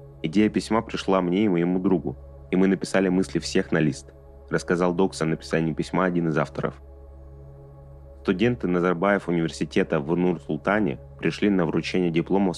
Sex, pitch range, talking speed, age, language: male, 70-90 Hz, 150 wpm, 20-39, Russian